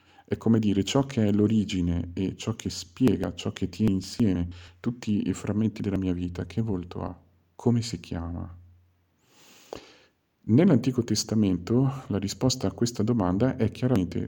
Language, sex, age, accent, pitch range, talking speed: Italian, male, 50-69, native, 90-110 Hz, 150 wpm